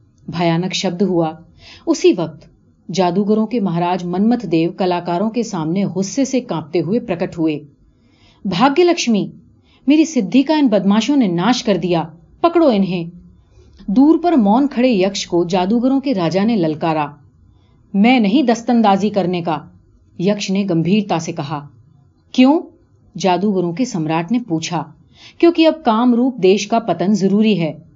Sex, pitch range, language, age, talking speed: female, 170-235 Hz, Urdu, 40-59, 140 wpm